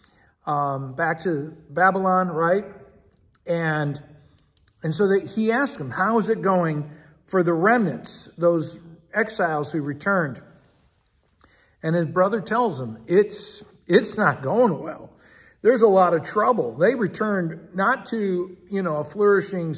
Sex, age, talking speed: male, 50-69, 140 wpm